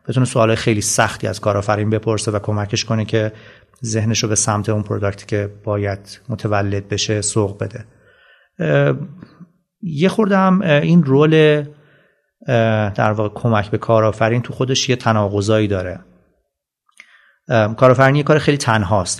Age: 30-49